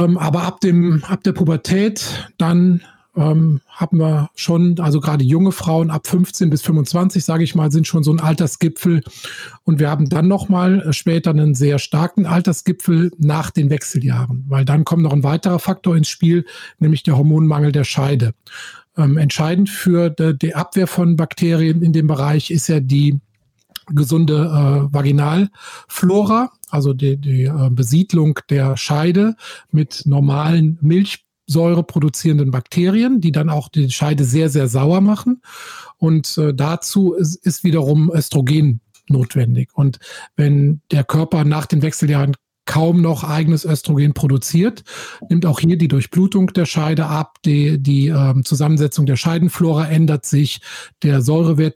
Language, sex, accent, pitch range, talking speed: German, male, German, 145-170 Hz, 150 wpm